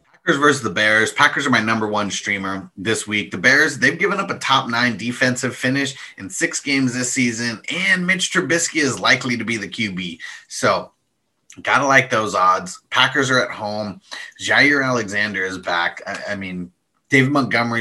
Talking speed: 180 wpm